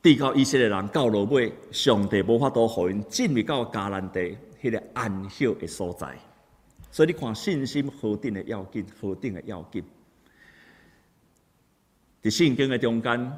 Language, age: Chinese, 50-69